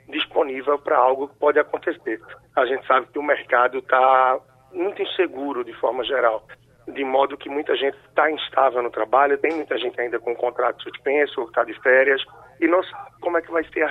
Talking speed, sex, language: 205 wpm, male, Portuguese